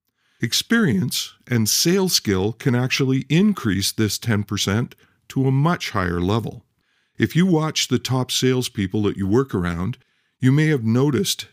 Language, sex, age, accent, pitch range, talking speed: English, male, 50-69, American, 105-145 Hz, 145 wpm